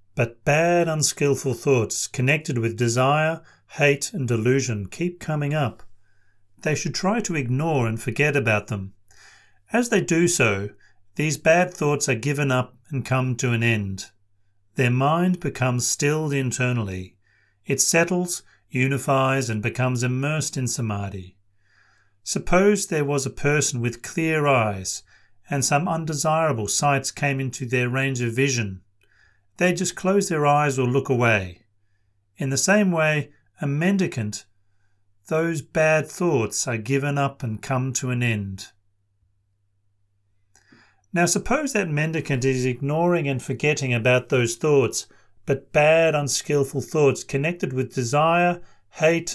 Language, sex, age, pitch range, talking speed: English, male, 40-59, 110-155 Hz, 135 wpm